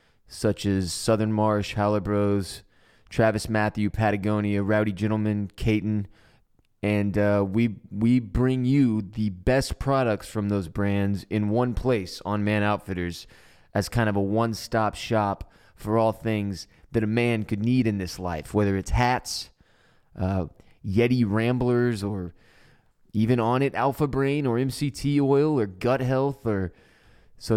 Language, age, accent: English, 20-39, American